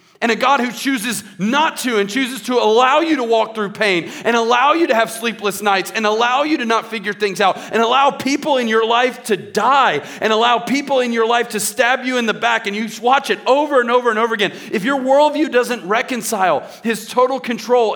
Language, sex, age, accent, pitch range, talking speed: English, male, 40-59, American, 140-230 Hz, 235 wpm